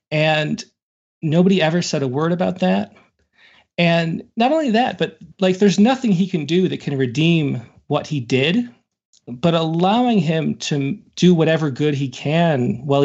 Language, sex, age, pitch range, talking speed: English, male, 30-49, 140-190 Hz, 160 wpm